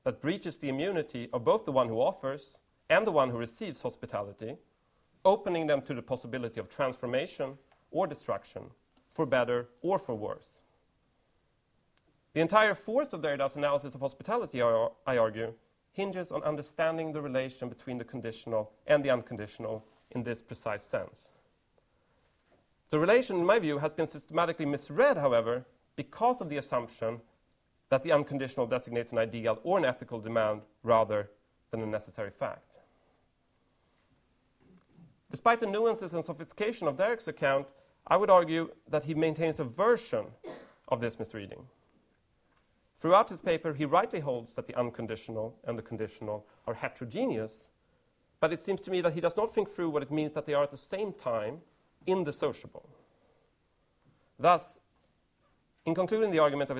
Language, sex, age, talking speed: English, male, 40-59, 155 wpm